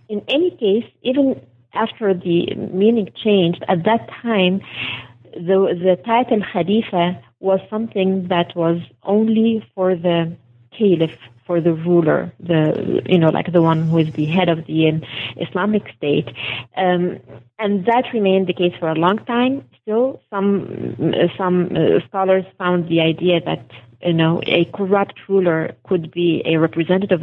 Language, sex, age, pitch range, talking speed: English, female, 30-49, 160-195 Hz, 150 wpm